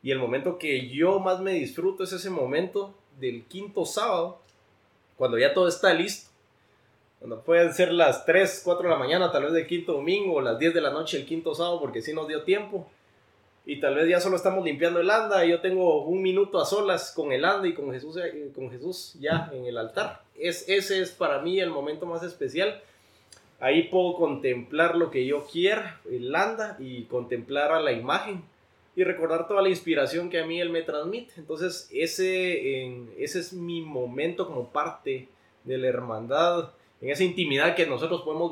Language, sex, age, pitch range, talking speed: Spanish, male, 20-39, 140-185 Hz, 200 wpm